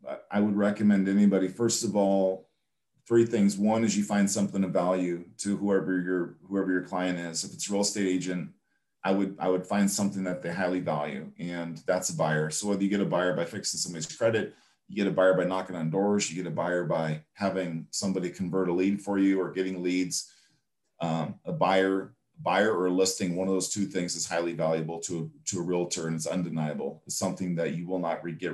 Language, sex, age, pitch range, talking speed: English, male, 40-59, 85-100 Hz, 225 wpm